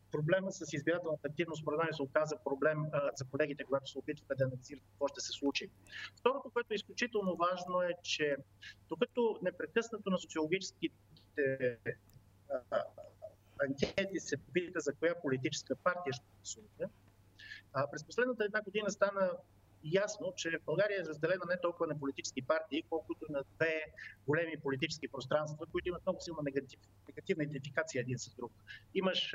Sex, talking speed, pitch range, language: male, 150 wpm, 135-170 Hz, Bulgarian